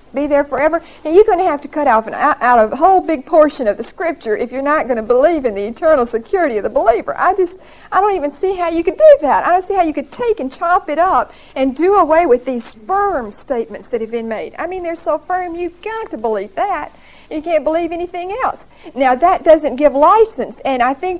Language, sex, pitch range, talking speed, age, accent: English, female, 255-360 Hz, 250 wpm, 50-69, American